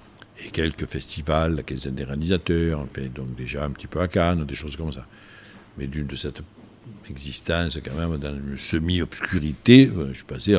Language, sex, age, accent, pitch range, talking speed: French, male, 60-79, French, 75-105 Hz, 175 wpm